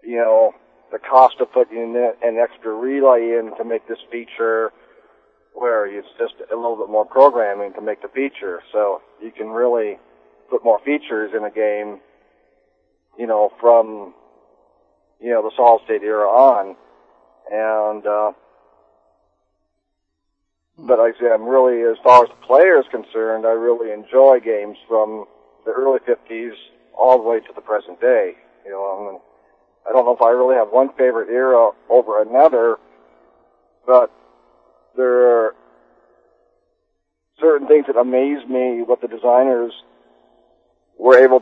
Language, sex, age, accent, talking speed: English, male, 40-59, American, 155 wpm